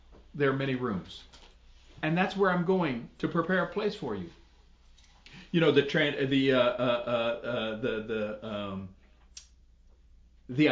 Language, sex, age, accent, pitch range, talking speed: English, male, 40-59, American, 120-165 Hz, 145 wpm